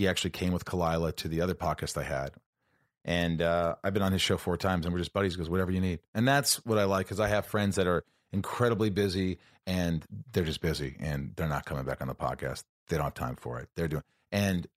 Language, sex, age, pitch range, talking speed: English, male, 40-59, 85-115 Hz, 250 wpm